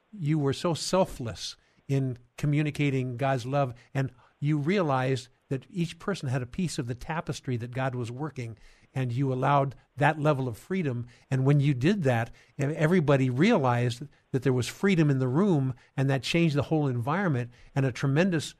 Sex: male